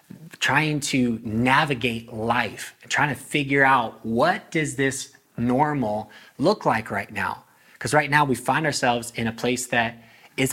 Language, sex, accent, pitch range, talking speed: English, male, American, 115-145 Hz, 160 wpm